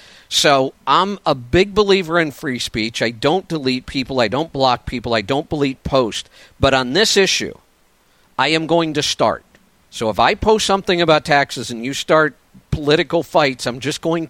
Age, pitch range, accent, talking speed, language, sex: 50-69, 120-160 Hz, American, 185 wpm, English, male